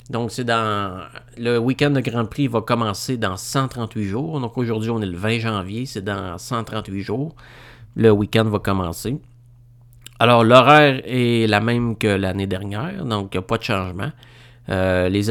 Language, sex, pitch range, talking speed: French, male, 100-120 Hz, 165 wpm